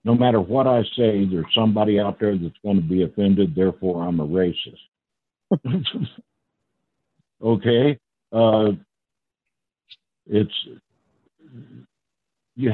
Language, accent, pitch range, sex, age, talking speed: English, American, 90-115 Hz, male, 60-79, 105 wpm